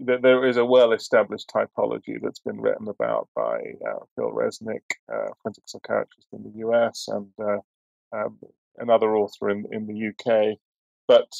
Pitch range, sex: 110-130 Hz, male